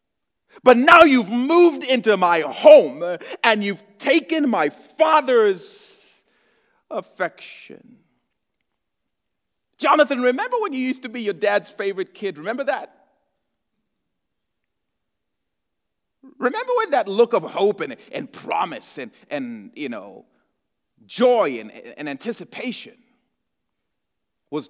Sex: male